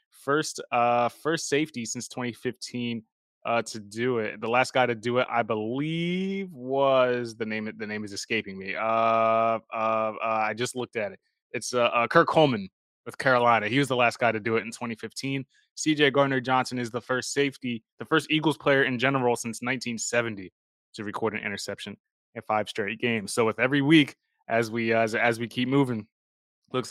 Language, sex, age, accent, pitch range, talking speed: English, male, 20-39, American, 115-135 Hz, 190 wpm